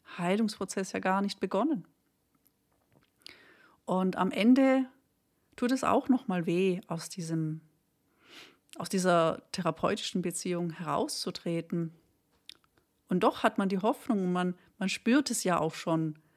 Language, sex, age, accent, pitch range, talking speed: German, female, 40-59, German, 170-225 Hz, 120 wpm